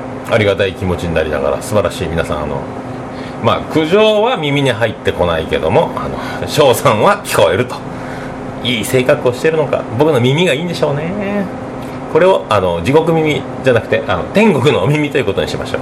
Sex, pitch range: male, 125-145 Hz